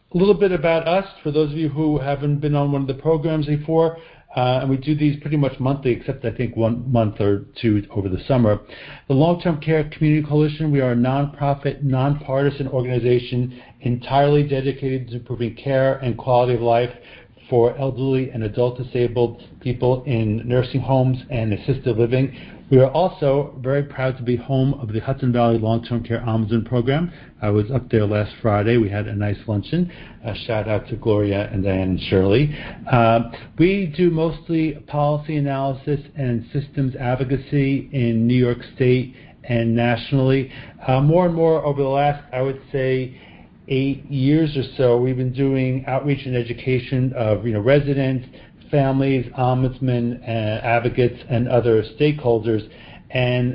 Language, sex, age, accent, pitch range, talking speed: English, male, 60-79, American, 120-140 Hz, 170 wpm